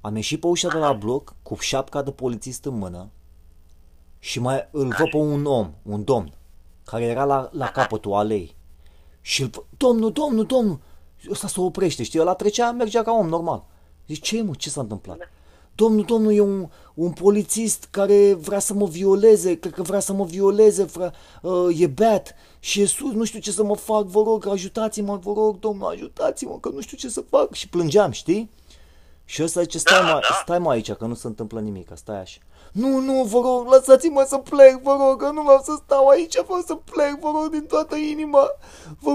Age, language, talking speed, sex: 30-49, Romanian, 210 wpm, male